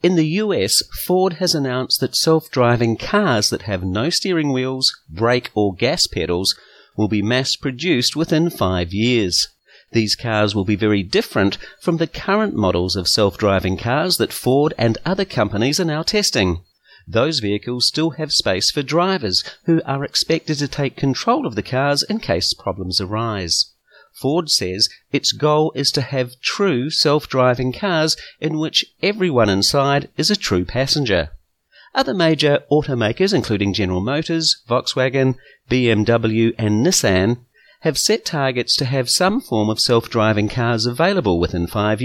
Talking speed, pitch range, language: 150 wpm, 105-155 Hz, English